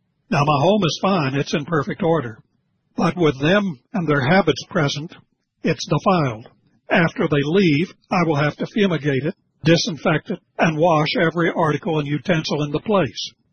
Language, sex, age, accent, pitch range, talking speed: English, male, 60-79, American, 145-180 Hz, 170 wpm